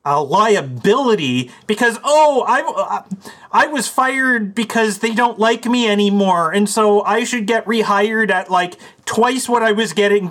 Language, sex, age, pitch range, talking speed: English, male, 30-49, 155-220 Hz, 155 wpm